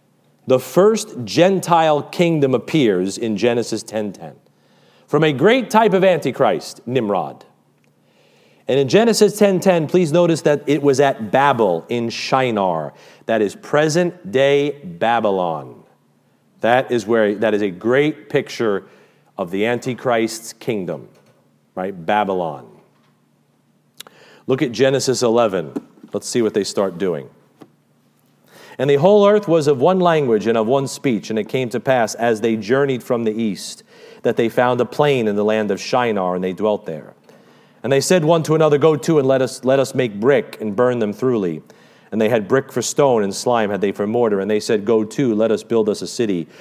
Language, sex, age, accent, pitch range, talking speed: English, male, 40-59, American, 110-150 Hz, 175 wpm